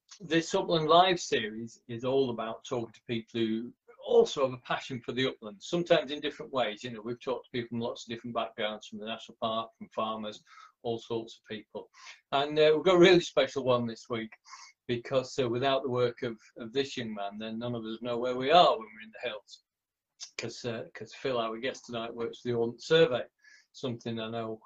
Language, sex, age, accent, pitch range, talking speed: English, male, 40-59, British, 115-150 Hz, 225 wpm